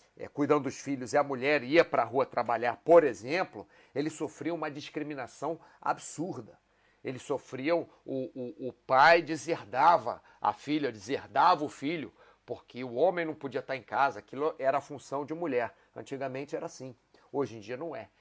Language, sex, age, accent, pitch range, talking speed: Portuguese, male, 40-59, Brazilian, 130-170 Hz, 175 wpm